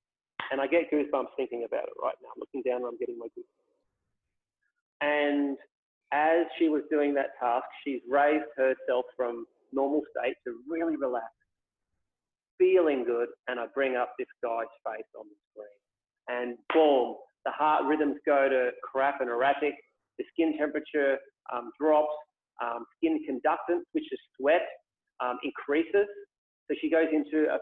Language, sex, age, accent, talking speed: English, male, 30-49, Australian, 160 wpm